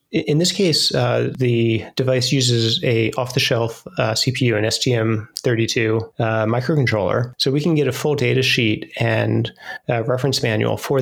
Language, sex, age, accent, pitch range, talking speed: English, male, 30-49, American, 115-135 Hz, 150 wpm